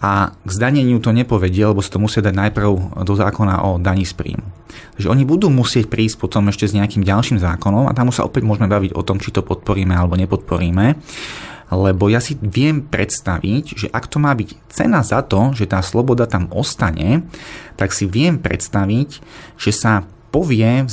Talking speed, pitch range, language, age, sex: 185 wpm, 95-125 Hz, Slovak, 30-49, male